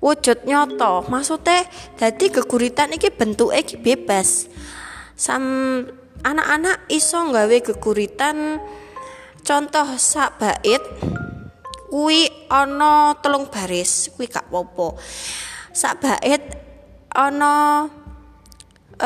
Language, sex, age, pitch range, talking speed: Indonesian, female, 20-39, 225-295 Hz, 90 wpm